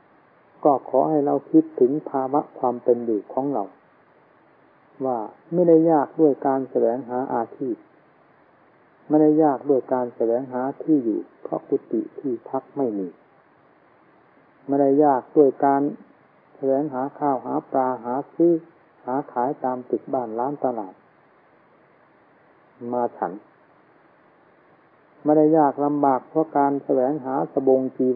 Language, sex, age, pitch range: English, male, 60-79, 125-150 Hz